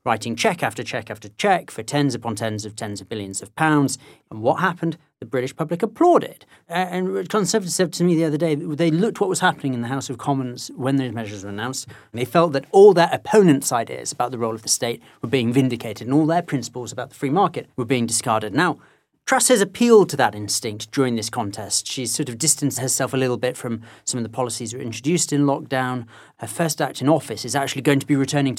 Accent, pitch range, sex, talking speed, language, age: British, 110-145 Hz, male, 235 wpm, English, 40-59